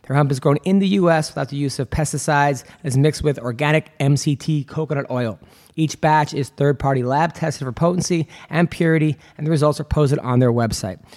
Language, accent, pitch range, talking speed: English, American, 135-160 Hz, 200 wpm